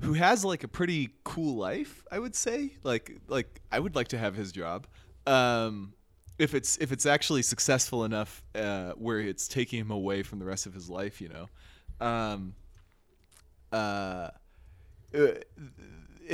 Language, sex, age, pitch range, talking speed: English, male, 20-39, 100-135 Hz, 160 wpm